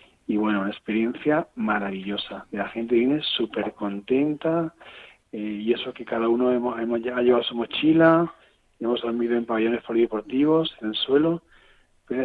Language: Spanish